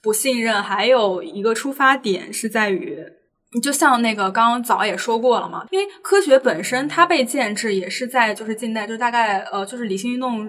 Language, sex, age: Chinese, female, 10-29